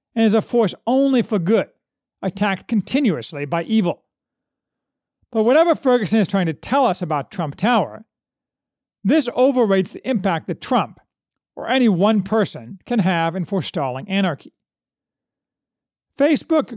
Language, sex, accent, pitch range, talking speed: English, male, American, 165-230 Hz, 135 wpm